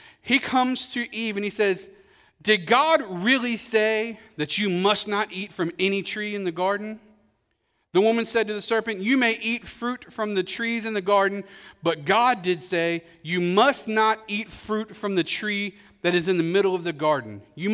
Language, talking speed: English, 200 wpm